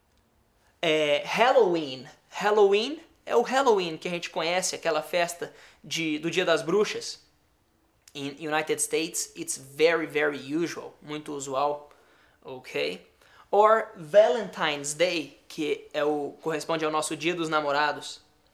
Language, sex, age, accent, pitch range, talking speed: Portuguese, male, 20-39, Brazilian, 155-225 Hz, 125 wpm